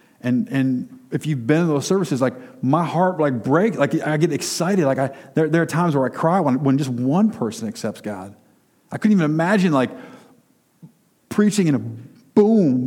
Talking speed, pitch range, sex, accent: 195 wpm, 130-170 Hz, male, American